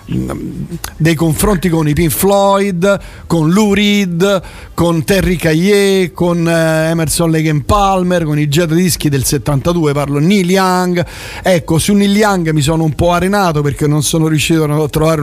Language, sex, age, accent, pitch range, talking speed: Italian, male, 50-69, native, 140-190 Hz, 160 wpm